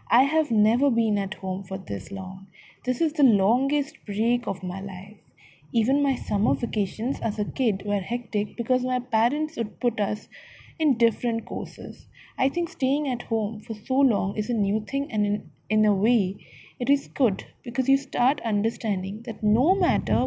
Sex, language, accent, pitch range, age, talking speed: female, English, Indian, 200-250 Hz, 20-39, 185 wpm